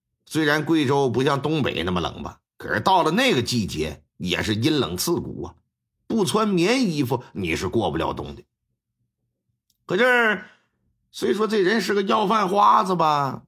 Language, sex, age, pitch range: Chinese, male, 50-69, 110-185 Hz